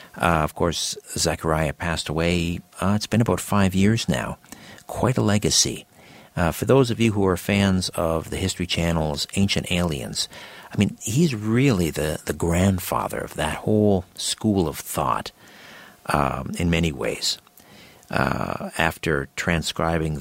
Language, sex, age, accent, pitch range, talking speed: English, male, 50-69, American, 75-95 Hz, 150 wpm